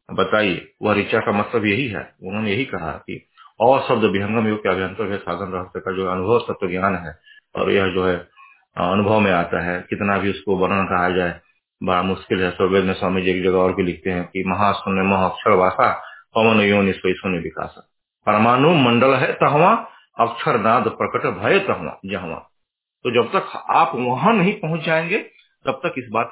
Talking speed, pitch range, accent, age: 185 wpm, 95-125 Hz, native, 30-49